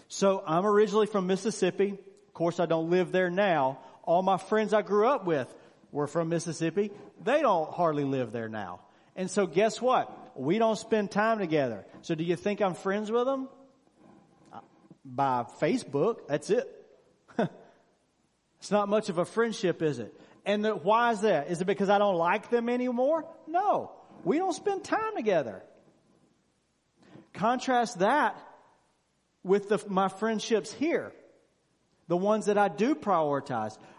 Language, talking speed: English, 155 wpm